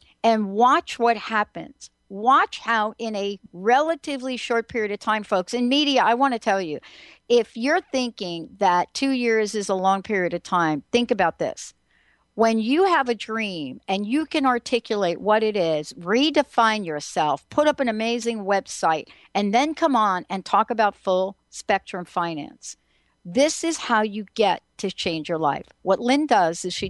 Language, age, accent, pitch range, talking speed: English, 60-79, American, 185-245 Hz, 175 wpm